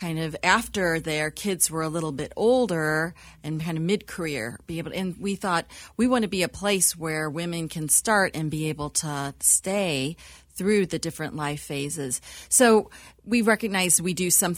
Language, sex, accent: English, female, American